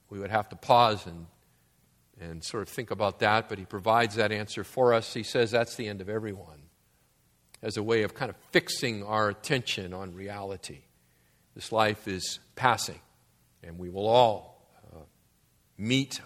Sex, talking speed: male, 175 wpm